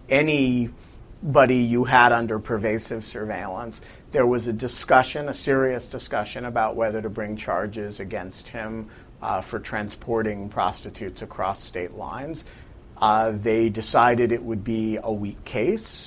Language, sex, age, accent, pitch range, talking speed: English, male, 40-59, American, 110-130 Hz, 135 wpm